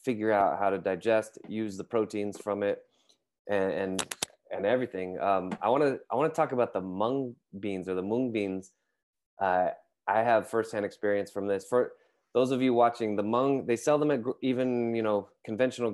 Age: 20-39